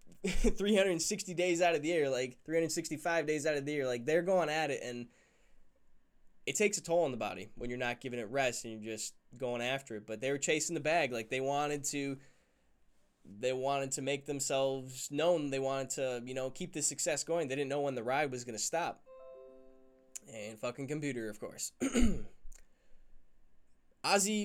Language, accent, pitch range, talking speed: English, American, 130-170 Hz, 195 wpm